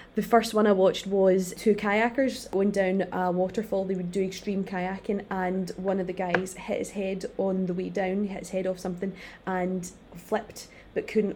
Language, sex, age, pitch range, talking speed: English, female, 20-39, 185-210 Hz, 200 wpm